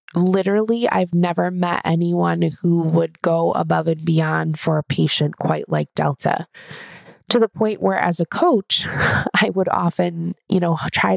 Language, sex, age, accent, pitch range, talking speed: English, female, 20-39, American, 160-180 Hz, 160 wpm